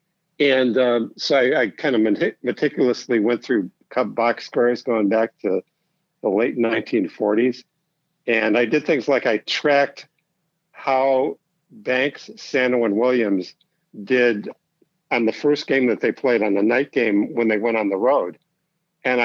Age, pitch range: 60-79, 110-145 Hz